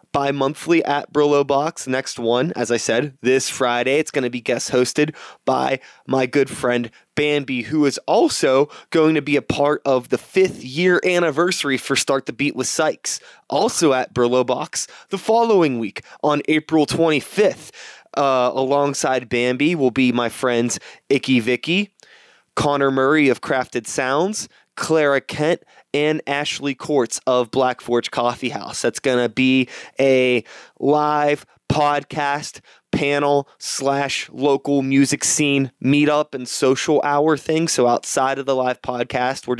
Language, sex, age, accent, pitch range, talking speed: English, male, 20-39, American, 130-150 Hz, 150 wpm